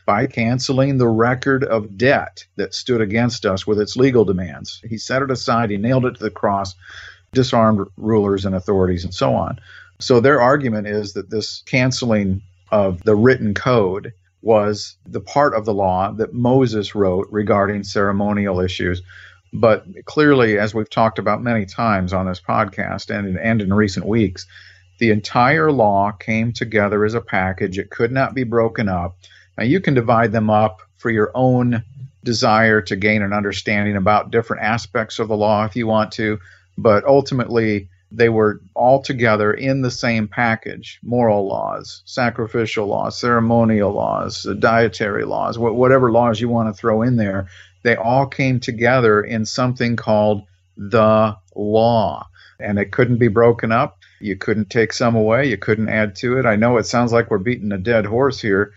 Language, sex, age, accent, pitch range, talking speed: English, male, 50-69, American, 100-120 Hz, 175 wpm